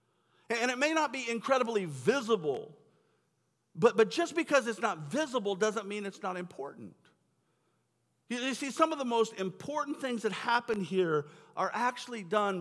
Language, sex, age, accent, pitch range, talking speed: English, male, 50-69, American, 170-235 Hz, 150 wpm